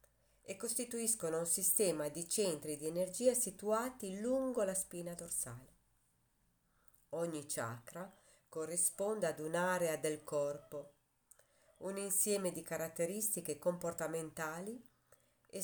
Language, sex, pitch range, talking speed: Italian, female, 150-205 Hz, 95 wpm